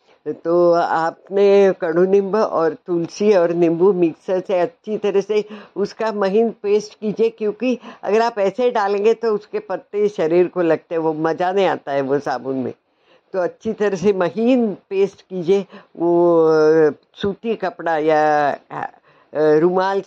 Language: Hindi